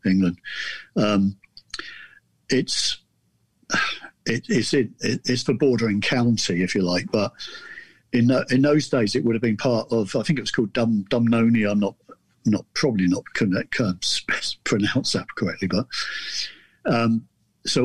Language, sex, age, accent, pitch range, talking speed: English, male, 50-69, British, 105-125 Hz, 150 wpm